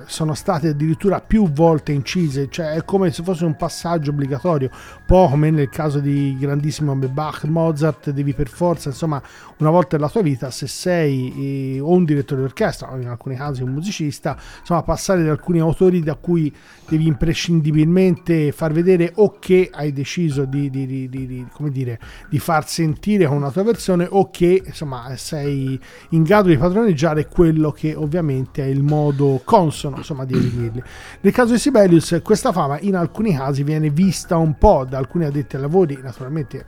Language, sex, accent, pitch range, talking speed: Italian, male, native, 140-175 Hz, 180 wpm